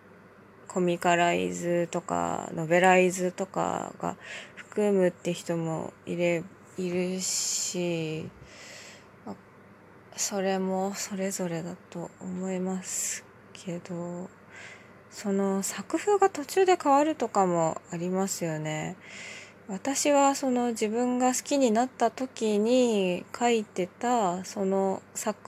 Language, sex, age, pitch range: Japanese, female, 20-39, 175-215 Hz